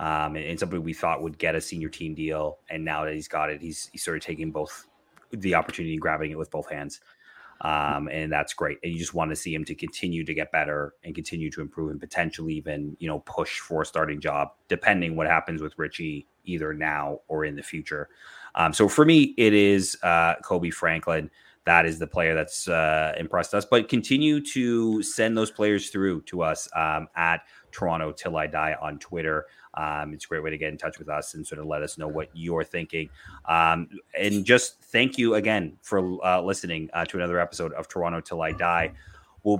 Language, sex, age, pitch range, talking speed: English, male, 30-49, 80-95 Hz, 225 wpm